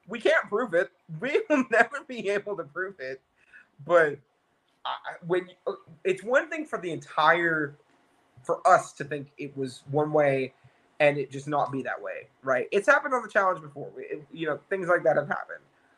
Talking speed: 195 wpm